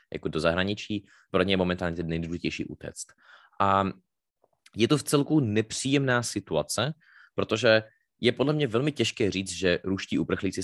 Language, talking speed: Slovak, 150 wpm